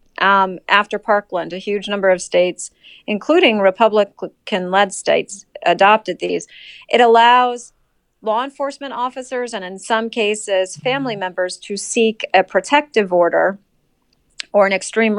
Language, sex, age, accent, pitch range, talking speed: English, female, 30-49, American, 190-235 Hz, 125 wpm